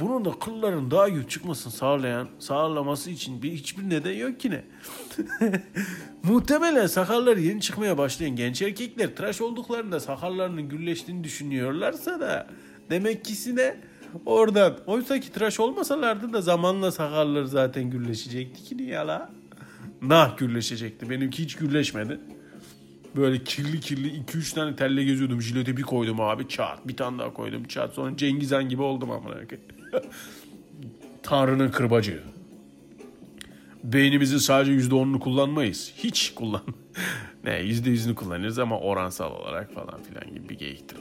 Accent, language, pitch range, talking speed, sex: native, Turkish, 120-185 Hz, 135 wpm, male